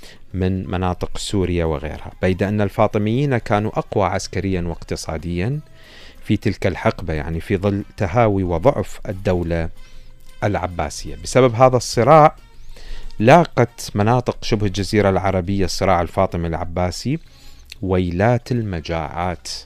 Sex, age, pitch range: male, 40-59, 85-110 Hz